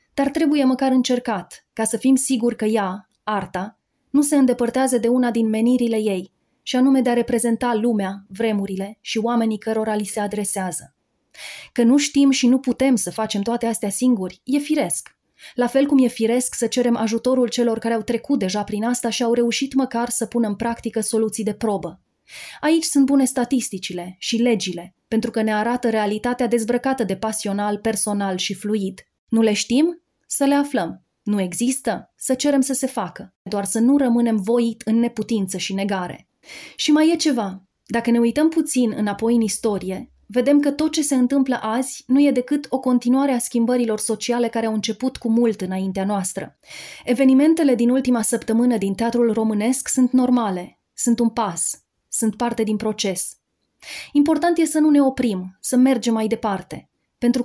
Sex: female